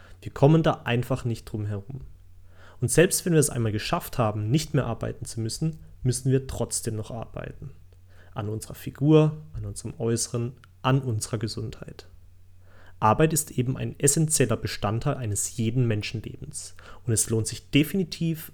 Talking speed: 155 wpm